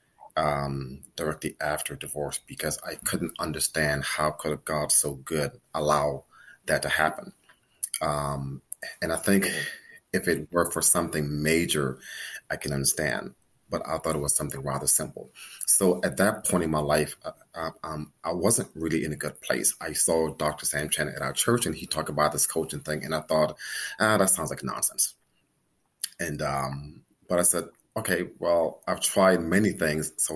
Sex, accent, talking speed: male, American, 180 wpm